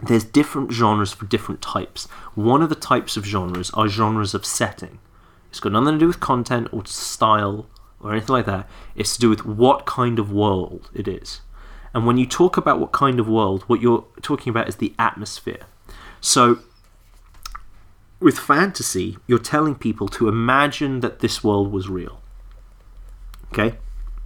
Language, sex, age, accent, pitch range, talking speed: English, male, 30-49, British, 100-125 Hz, 170 wpm